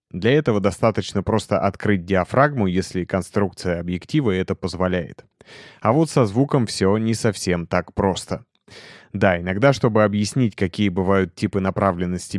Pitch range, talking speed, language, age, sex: 95-115 Hz, 135 wpm, Russian, 30-49, male